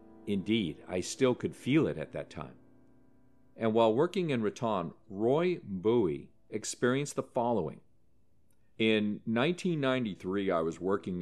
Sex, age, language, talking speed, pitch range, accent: male, 50-69, English, 130 wpm, 90-115 Hz, American